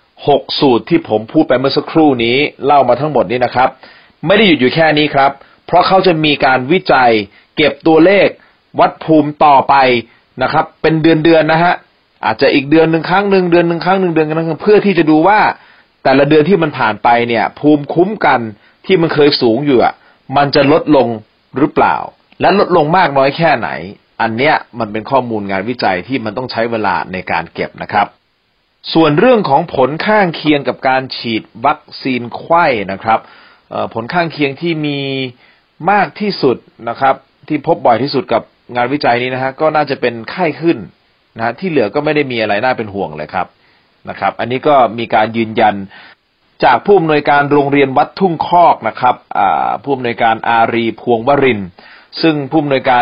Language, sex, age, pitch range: Thai, male, 30-49, 115-160 Hz